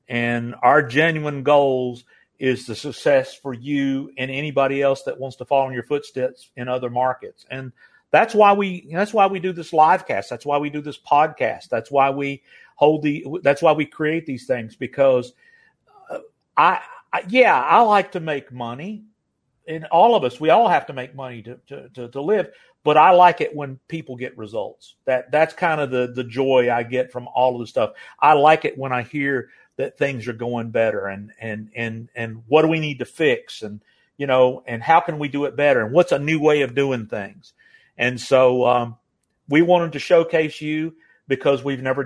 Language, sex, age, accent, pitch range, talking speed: English, male, 50-69, American, 130-160 Hz, 210 wpm